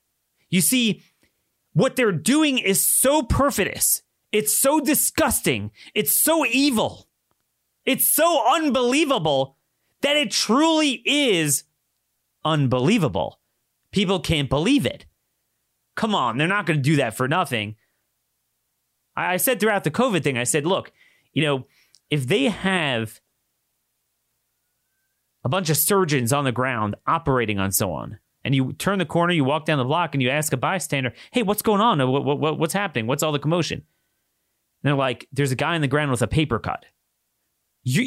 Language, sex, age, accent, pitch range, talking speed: English, male, 30-49, American, 130-190 Hz, 160 wpm